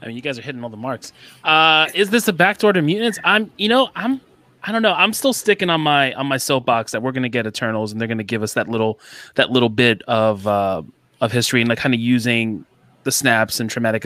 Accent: American